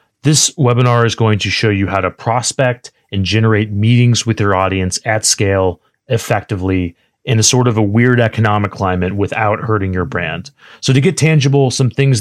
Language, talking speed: English, 180 wpm